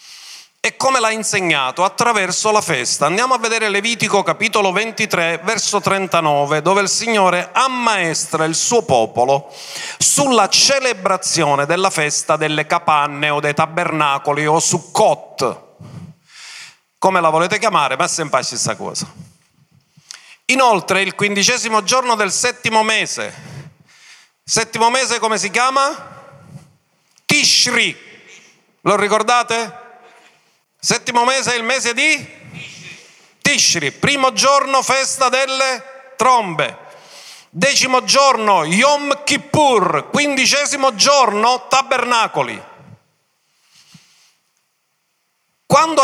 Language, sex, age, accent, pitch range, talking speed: Italian, male, 40-59, native, 175-250 Hz, 105 wpm